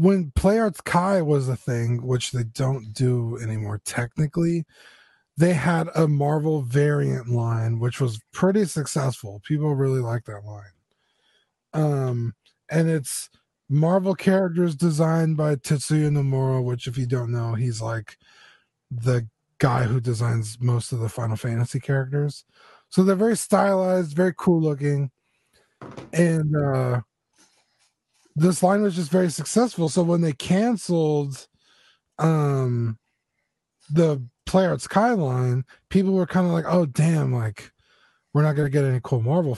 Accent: American